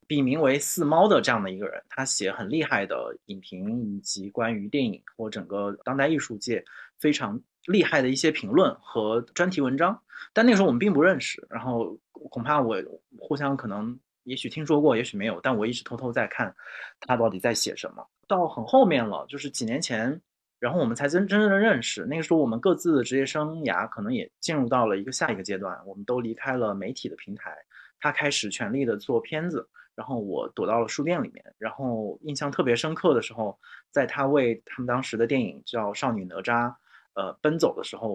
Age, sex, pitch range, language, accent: 30-49, male, 115-145 Hz, Chinese, native